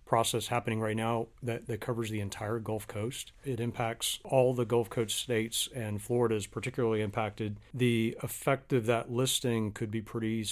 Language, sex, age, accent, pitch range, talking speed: English, male, 40-59, American, 105-120 Hz, 175 wpm